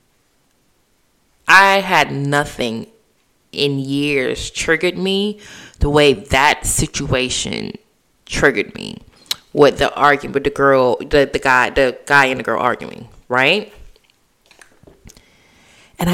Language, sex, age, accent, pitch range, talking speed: English, female, 20-39, American, 135-160 Hz, 110 wpm